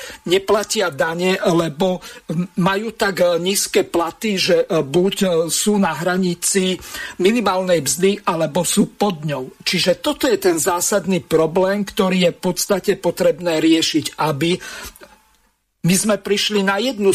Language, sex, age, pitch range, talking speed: Slovak, male, 50-69, 170-205 Hz, 125 wpm